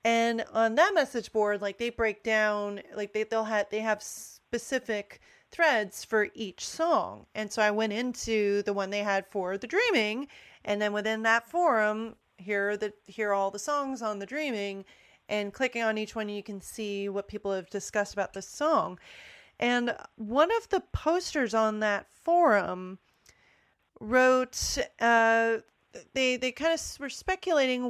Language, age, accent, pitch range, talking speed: English, 30-49, American, 210-260 Hz, 170 wpm